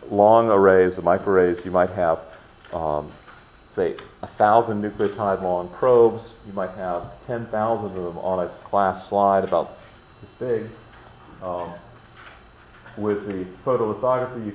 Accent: American